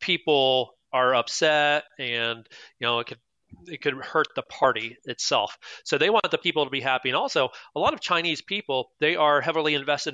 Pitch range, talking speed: 125-145 Hz, 195 wpm